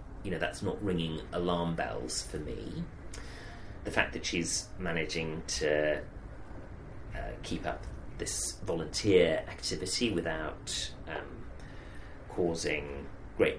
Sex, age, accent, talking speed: male, 30-49, British, 110 wpm